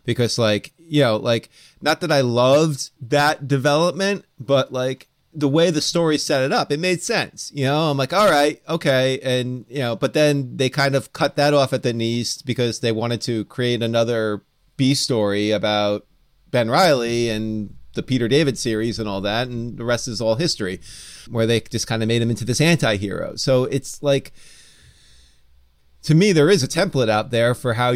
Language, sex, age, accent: English, male, 30-49, American